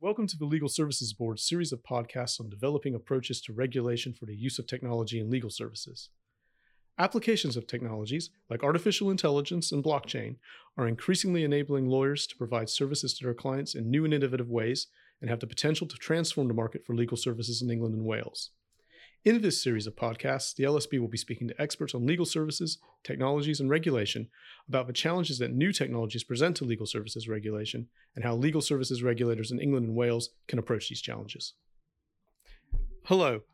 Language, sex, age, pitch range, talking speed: English, male, 40-59, 115-150 Hz, 185 wpm